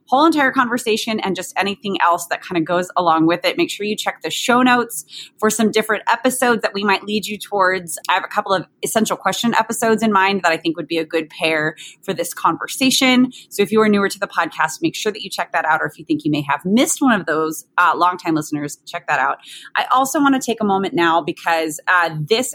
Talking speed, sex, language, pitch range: 255 wpm, female, English, 170-225 Hz